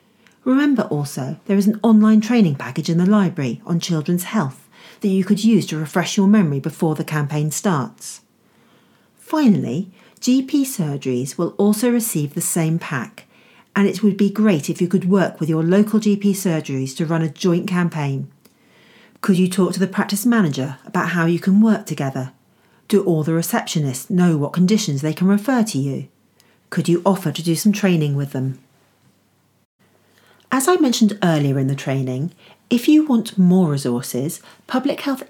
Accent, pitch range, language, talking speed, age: British, 155-210 Hz, English, 175 wpm, 40-59